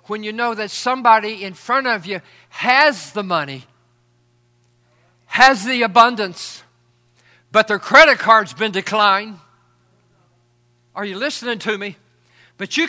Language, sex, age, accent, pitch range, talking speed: English, male, 60-79, American, 185-290 Hz, 130 wpm